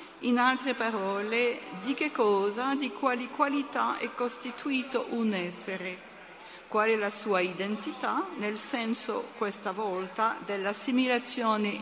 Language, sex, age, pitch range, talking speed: Italian, female, 50-69, 195-255 Hz, 115 wpm